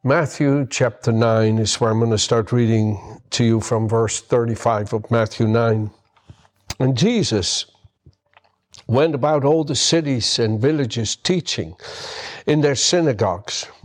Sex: male